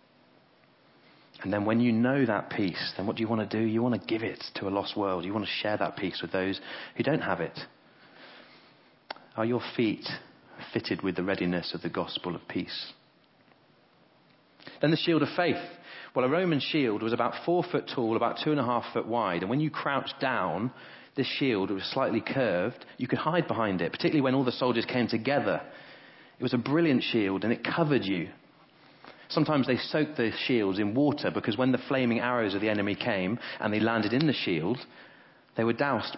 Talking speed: 205 wpm